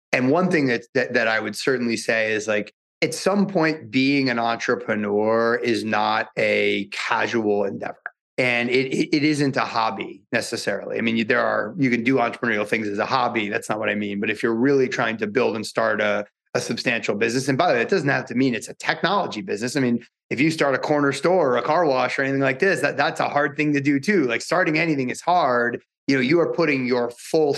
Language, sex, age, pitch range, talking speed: English, male, 30-49, 115-140 Hz, 240 wpm